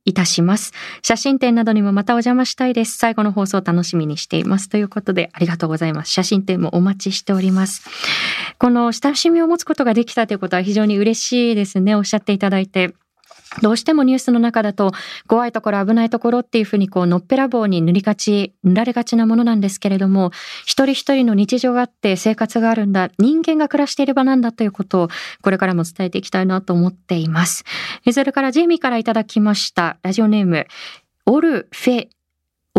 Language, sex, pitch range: Japanese, female, 190-240 Hz